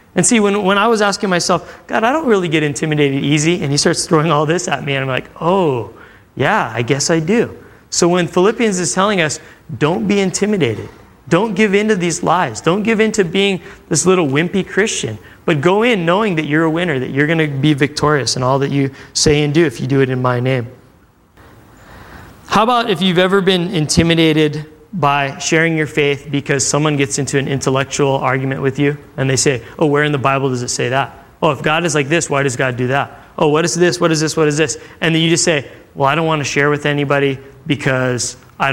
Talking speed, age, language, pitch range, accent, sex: 235 wpm, 20-39, English, 135-175 Hz, American, male